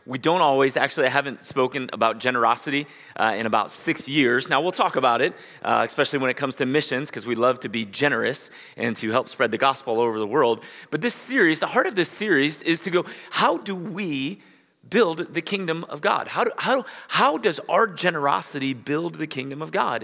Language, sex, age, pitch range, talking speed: English, male, 30-49, 135-175 Hz, 210 wpm